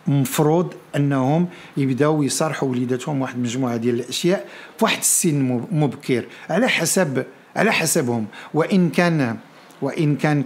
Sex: male